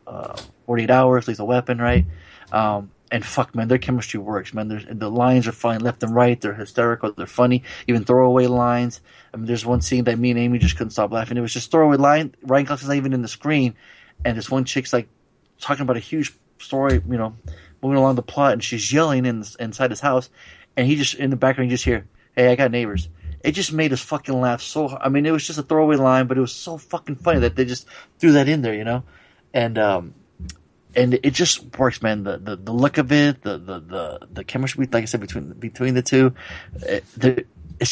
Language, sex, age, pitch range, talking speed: English, male, 30-49, 115-140 Hz, 240 wpm